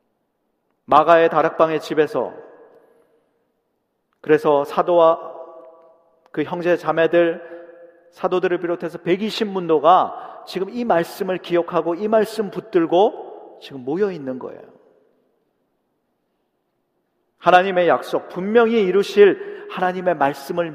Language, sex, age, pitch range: Korean, male, 40-59, 160-210 Hz